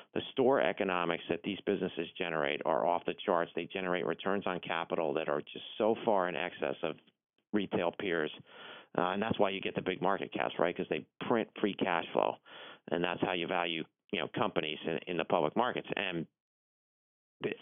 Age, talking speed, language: 30-49, 200 wpm, English